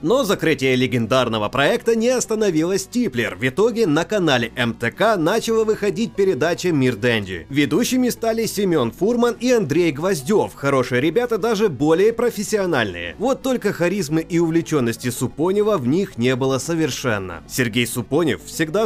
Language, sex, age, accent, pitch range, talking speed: Russian, male, 30-49, native, 130-200 Hz, 135 wpm